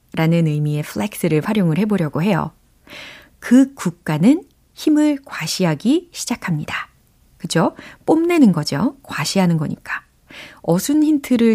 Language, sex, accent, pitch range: Korean, female, native, 165-275 Hz